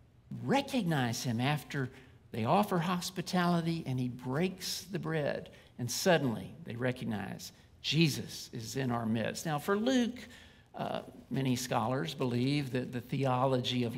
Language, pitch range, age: English, 125-155 Hz, 50-69